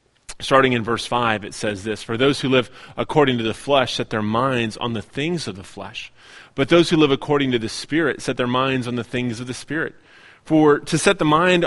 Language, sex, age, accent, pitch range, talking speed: English, male, 30-49, American, 120-155 Hz, 235 wpm